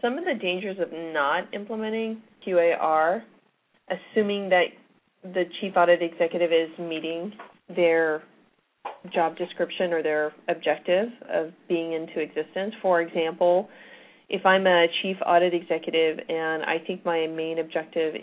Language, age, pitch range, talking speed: English, 30-49, 165-185 Hz, 130 wpm